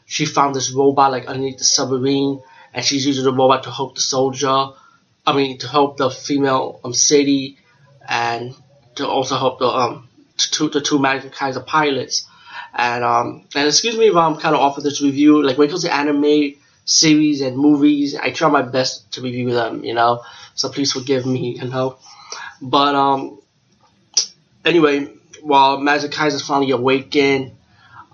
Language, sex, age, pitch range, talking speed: English, male, 20-39, 130-145 Hz, 175 wpm